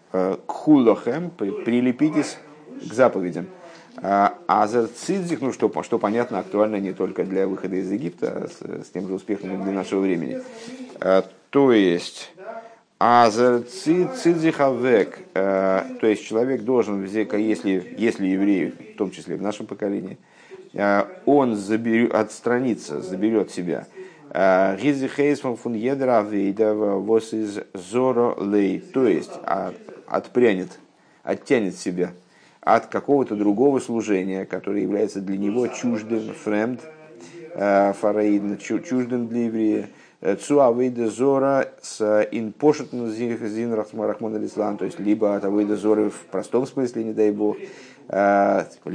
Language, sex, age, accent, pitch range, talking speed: Russian, male, 50-69, native, 100-130 Hz, 115 wpm